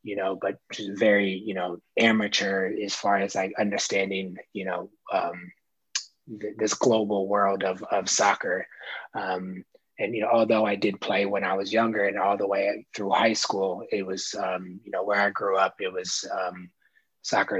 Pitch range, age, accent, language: 95-110 Hz, 20-39, American, English